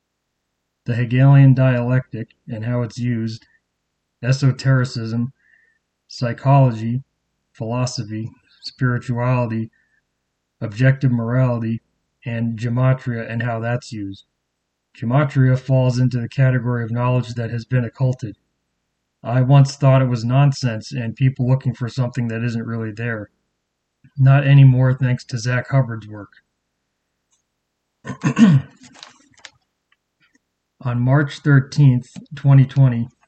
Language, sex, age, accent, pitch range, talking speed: English, male, 30-49, American, 115-135 Hz, 100 wpm